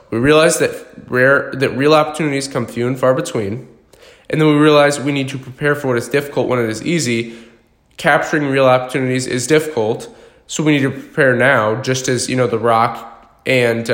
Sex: male